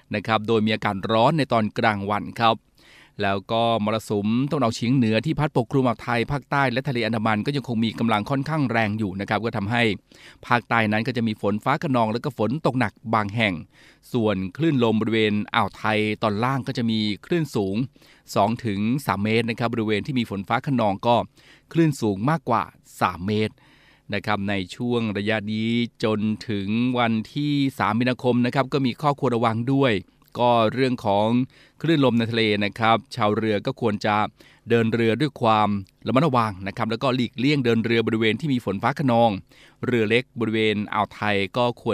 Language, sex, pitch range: Thai, male, 105-125 Hz